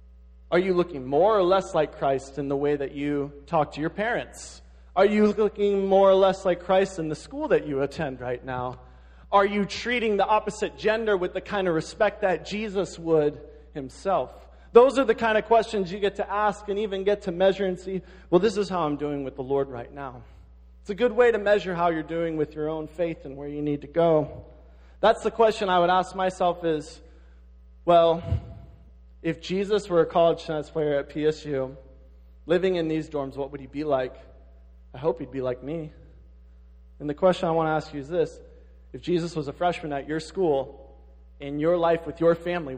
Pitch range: 135-185 Hz